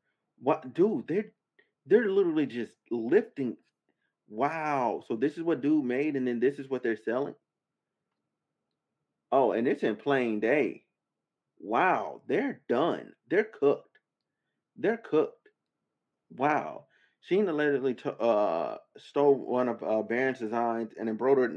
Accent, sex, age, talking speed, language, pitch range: American, male, 30-49, 130 wpm, English, 115-140 Hz